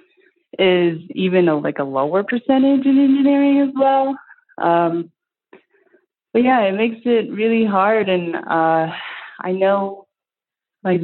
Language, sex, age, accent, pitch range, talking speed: English, female, 20-39, American, 160-230 Hz, 130 wpm